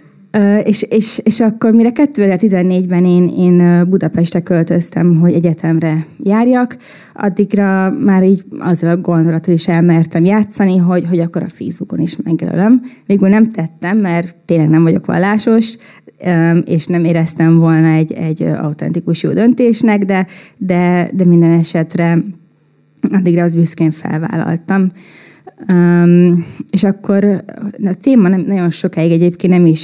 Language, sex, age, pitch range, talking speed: Hungarian, female, 20-39, 165-195 Hz, 135 wpm